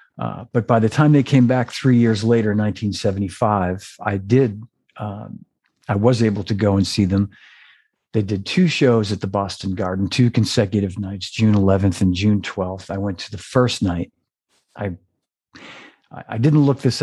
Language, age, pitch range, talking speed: English, 50-69, 95-115 Hz, 175 wpm